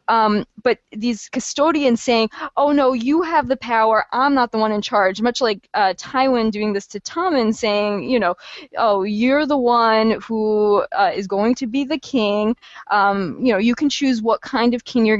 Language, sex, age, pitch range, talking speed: English, female, 20-39, 200-245 Hz, 195 wpm